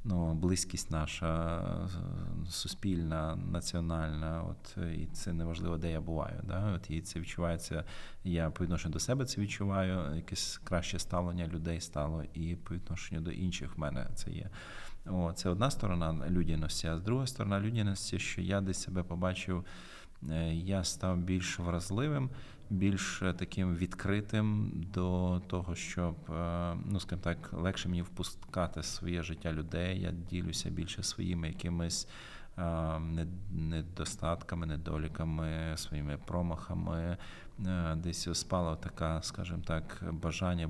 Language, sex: Ukrainian, male